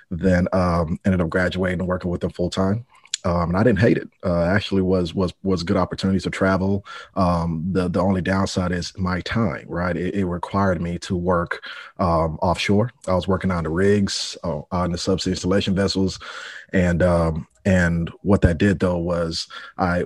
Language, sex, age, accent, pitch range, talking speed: English, male, 30-49, American, 85-100 Hz, 190 wpm